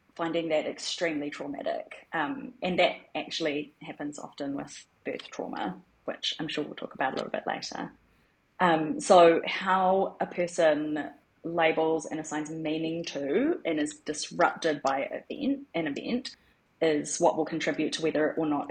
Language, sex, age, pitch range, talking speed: English, female, 30-49, 155-185 Hz, 150 wpm